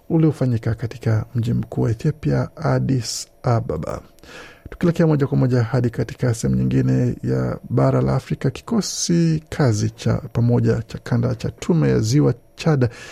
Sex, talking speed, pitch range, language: male, 140 wpm, 115-145 Hz, Swahili